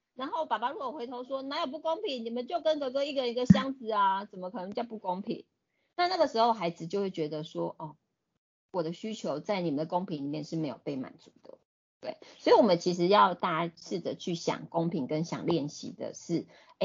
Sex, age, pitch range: female, 30-49, 155-215 Hz